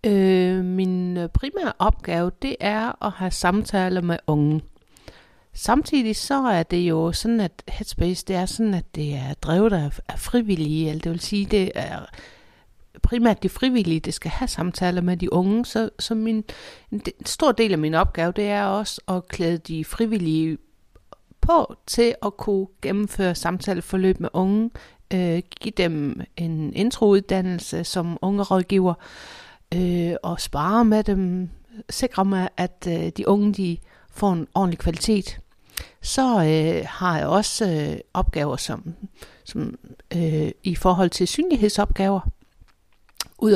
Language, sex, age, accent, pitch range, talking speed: Danish, female, 60-79, native, 165-210 Hz, 145 wpm